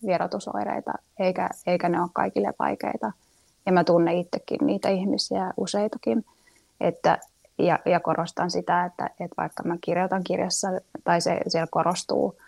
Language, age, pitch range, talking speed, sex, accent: Finnish, 20-39, 175-205 Hz, 140 wpm, female, native